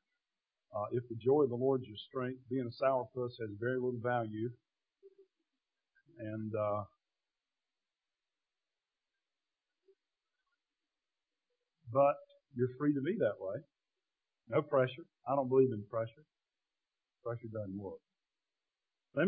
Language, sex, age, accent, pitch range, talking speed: English, male, 50-69, American, 115-150 Hz, 115 wpm